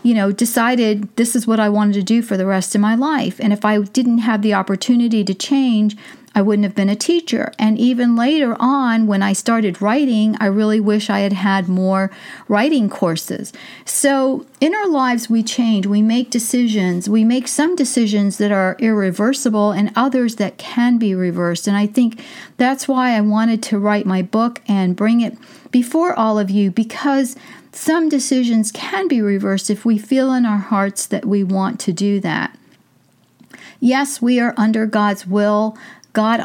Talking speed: 185 wpm